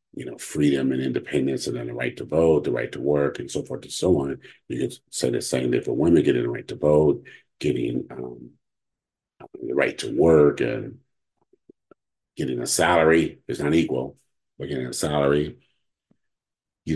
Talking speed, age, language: 185 wpm, 50-69, English